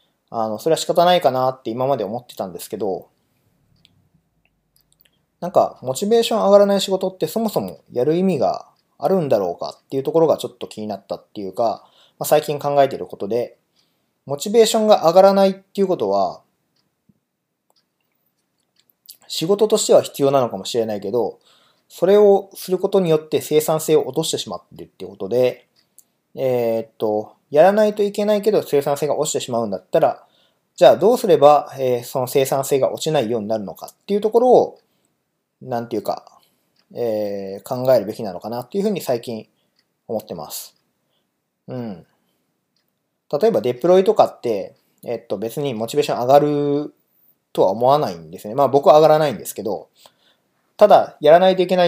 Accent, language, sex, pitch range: native, Japanese, male, 125-190 Hz